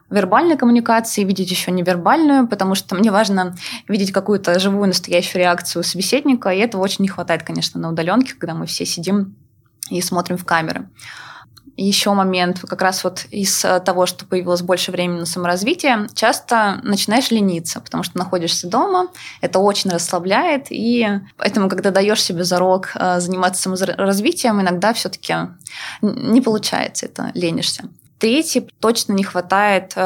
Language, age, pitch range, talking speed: Russian, 20-39, 180-215 Hz, 145 wpm